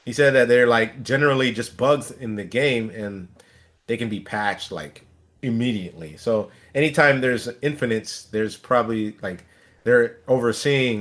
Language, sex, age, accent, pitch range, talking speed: English, male, 30-49, American, 110-150 Hz, 145 wpm